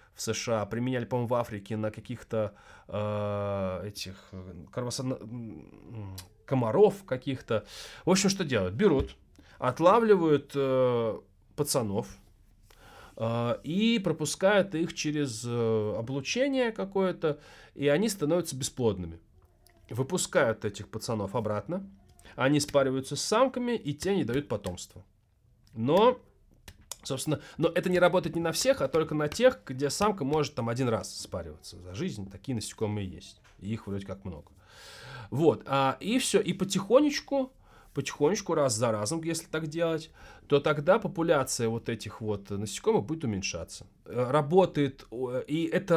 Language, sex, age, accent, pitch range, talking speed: Russian, male, 20-39, native, 110-165 Hz, 130 wpm